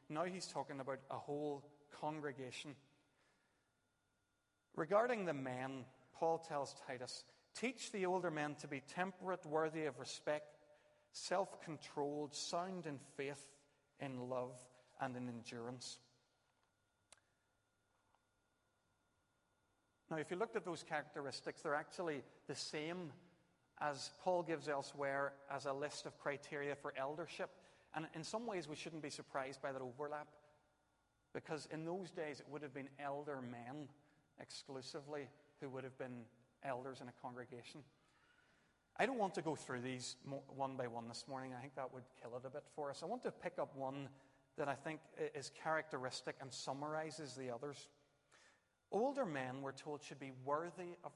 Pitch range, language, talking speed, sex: 135-155 Hz, English, 150 wpm, male